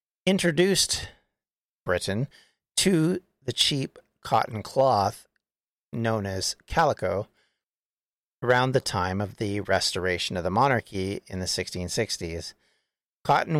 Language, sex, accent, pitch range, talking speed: English, male, American, 95-130 Hz, 100 wpm